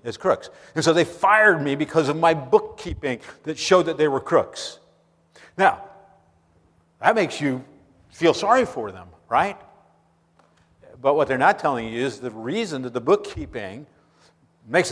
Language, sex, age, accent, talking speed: English, male, 50-69, American, 155 wpm